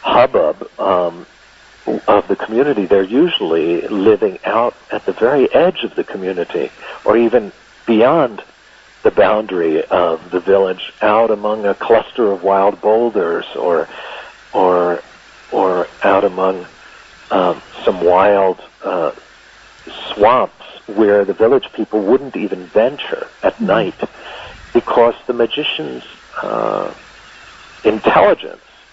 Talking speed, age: 115 wpm, 60-79